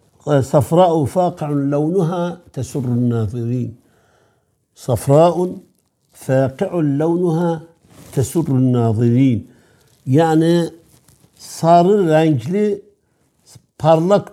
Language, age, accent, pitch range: Turkish, 60-79, native, 125-145 Hz